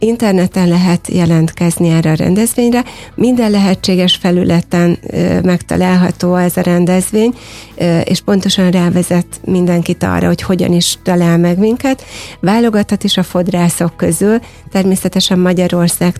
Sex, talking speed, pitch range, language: female, 120 wpm, 175-190 Hz, Hungarian